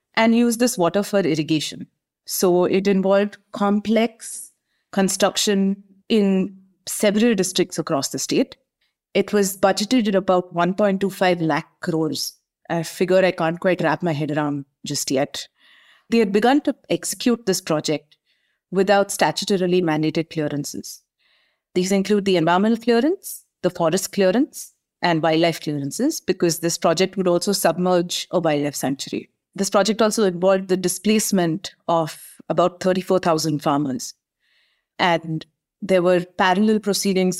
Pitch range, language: 165-205 Hz, English